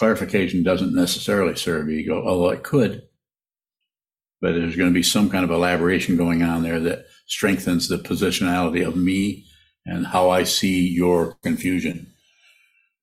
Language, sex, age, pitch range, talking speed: English, male, 60-79, 90-110 Hz, 145 wpm